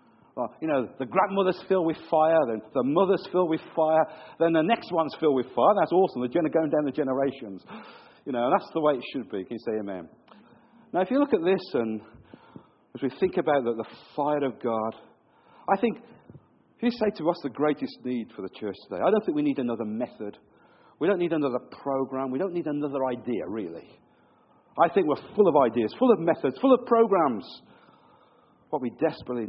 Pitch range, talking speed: 120-185 Hz, 210 wpm